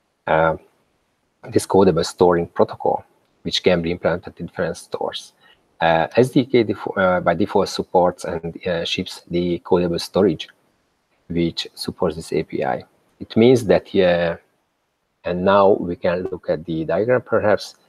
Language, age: English, 40-59